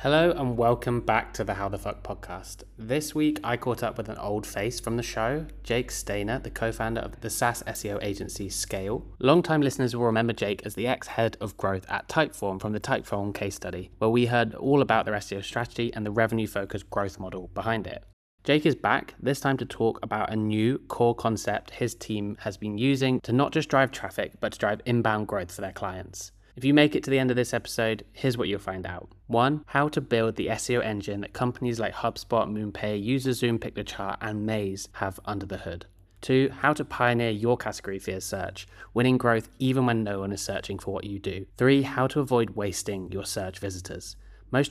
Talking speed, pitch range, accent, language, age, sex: 210 wpm, 100-125 Hz, British, English, 20-39, male